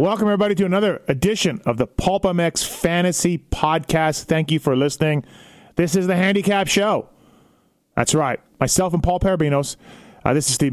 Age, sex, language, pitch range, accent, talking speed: 30-49, male, English, 135-170 Hz, American, 160 wpm